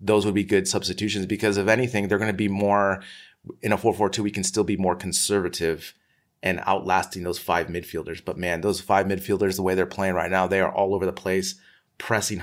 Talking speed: 215 wpm